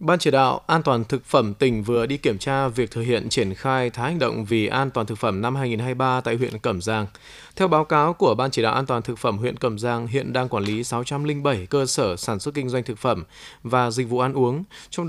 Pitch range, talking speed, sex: 120-150 Hz, 255 wpm, male